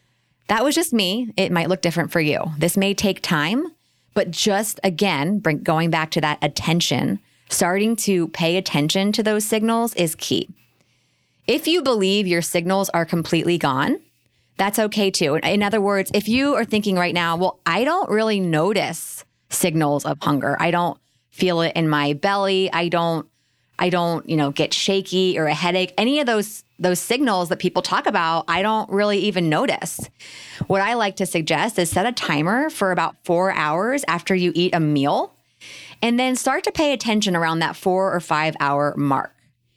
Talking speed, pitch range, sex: 185 wpm, 160-210 Hz, female